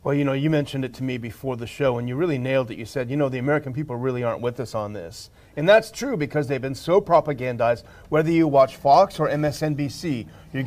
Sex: male